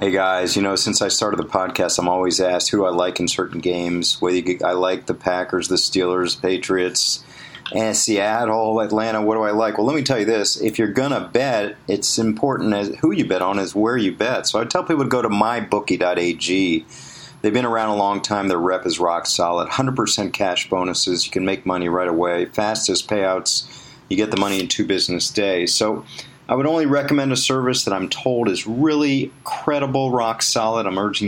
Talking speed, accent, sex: 215 wpm, American, male